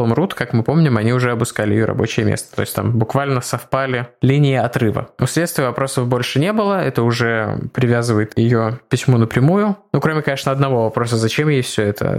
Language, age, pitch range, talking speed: Russian, 20-39, 120-140 Hz, 185 wpm